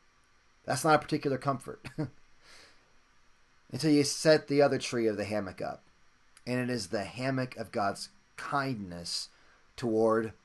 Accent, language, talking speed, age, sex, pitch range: American, English, 140 wpm, 30-49, male, 120-155 Hz